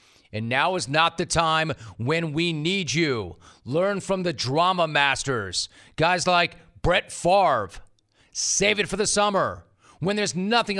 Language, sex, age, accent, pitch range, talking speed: English, male, 40-59, American, 125-180 Hz, 150 wpm